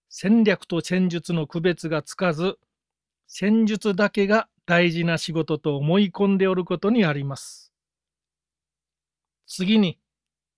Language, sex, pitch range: Japanese, male, 165-200 Hz